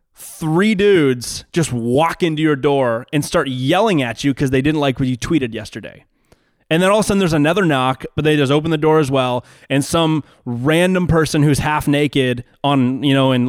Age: 20-39